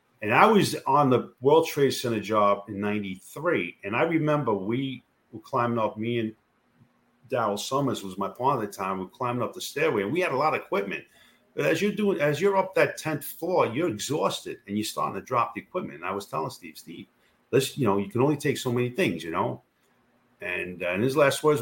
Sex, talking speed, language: male, 235 wpm, English